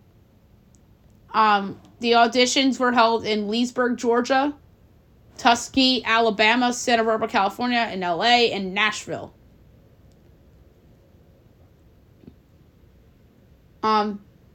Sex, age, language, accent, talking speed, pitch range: female, 20-39, English, American, 75 wpm, 185-230 Hz